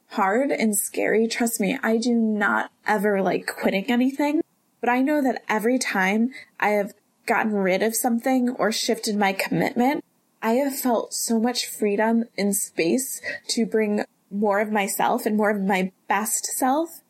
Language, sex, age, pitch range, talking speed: English, female, 20-39, 195-240 Hz, 165 wpm